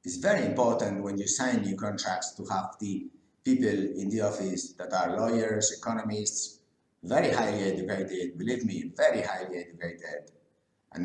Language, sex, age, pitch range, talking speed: English, male, 50-69, 95-110 Hz, 150 wpm